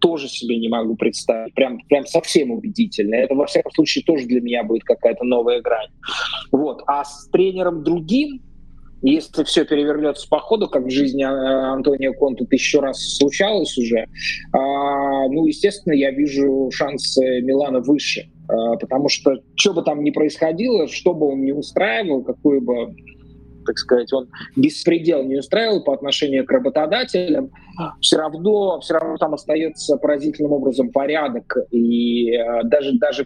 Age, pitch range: 20-39, 130-165 Hz